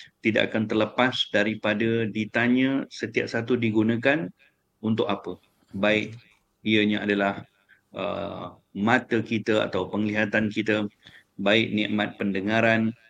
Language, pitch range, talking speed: English, 105-120 Hz, 100 wpm